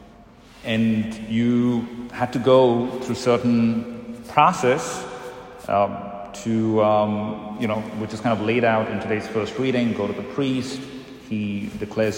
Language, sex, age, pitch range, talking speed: English, male, 30-49, 105-125 Hz, 145 wpm